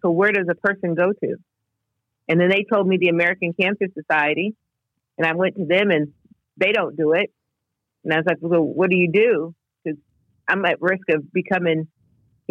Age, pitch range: 50-69, 145-185 Hz